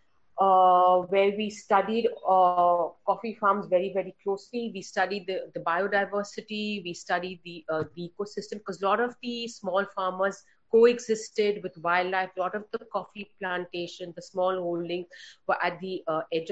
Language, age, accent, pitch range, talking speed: English, 40-59, Indian, 185-225 Hz, 165 wpm